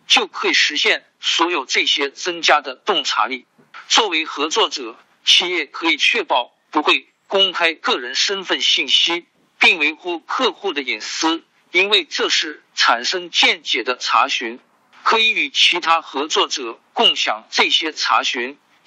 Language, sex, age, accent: Chinese, male, 50-69, native